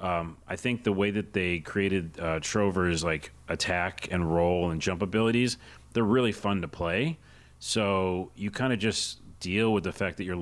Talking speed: 190 wpm